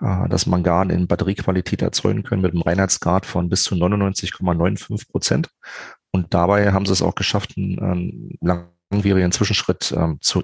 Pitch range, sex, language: 85-95 Hz, male, German